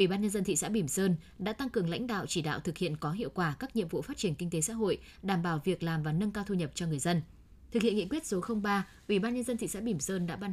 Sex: female